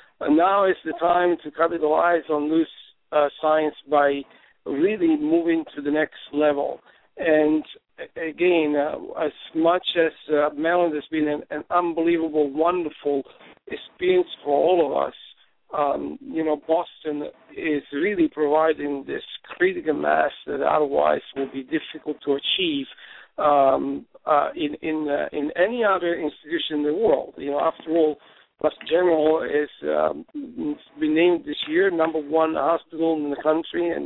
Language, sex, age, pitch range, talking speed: English, male, 50-69, 150-170 Hz, 150 wpm